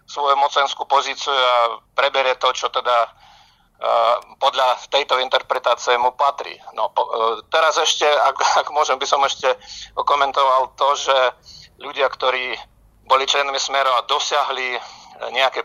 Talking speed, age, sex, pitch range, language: 140 wpm, 50-69, male, 130-145 Hz, Slovak